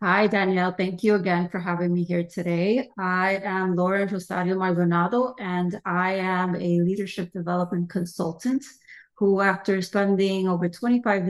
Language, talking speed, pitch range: English, 145 wpm, 170-205 Hz